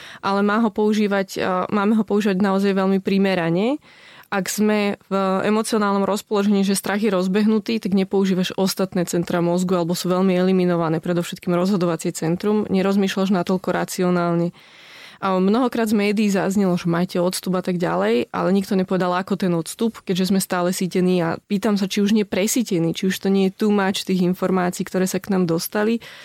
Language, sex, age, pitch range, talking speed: Slovak, female, 20-39, 180-205 Hz, 170 wpm